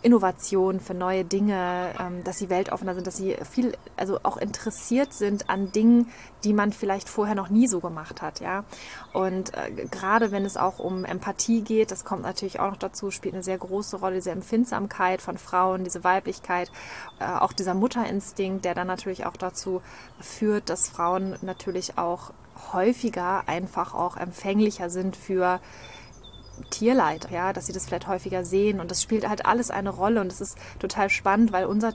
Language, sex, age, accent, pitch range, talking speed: German, female, 20-39, German, 180-205 Hz, 175 wpm